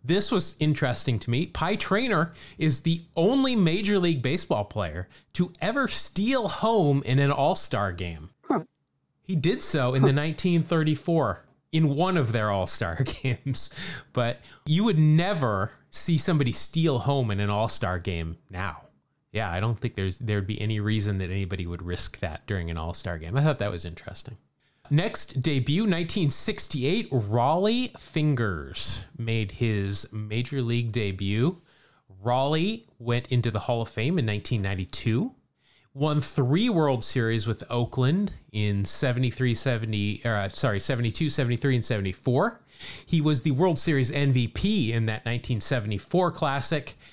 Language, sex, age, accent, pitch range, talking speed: English, male, 30-49, American, 110-155 Hz, 140 wpm